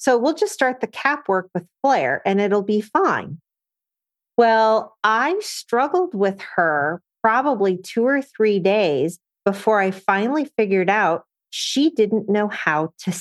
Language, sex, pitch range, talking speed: English, female, 175-215 Hz, 150 wpm